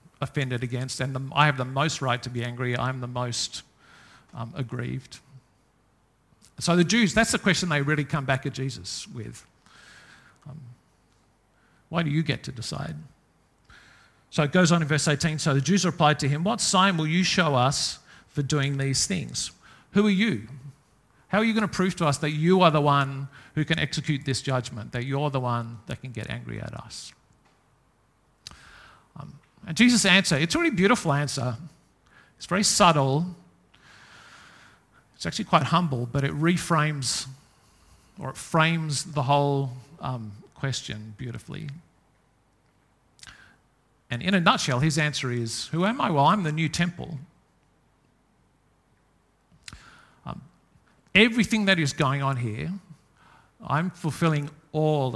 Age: 50-69